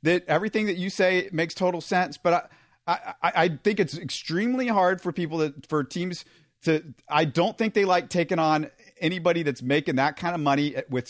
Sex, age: male, 40-59